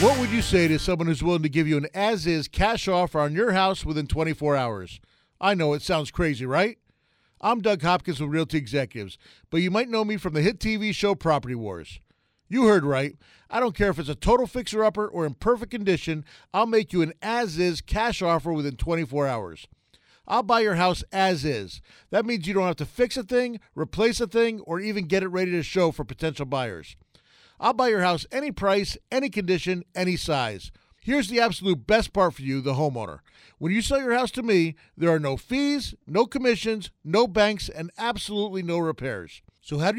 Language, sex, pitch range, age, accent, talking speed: English, male, 160-225 Hz, 40-59, American, 205 wpm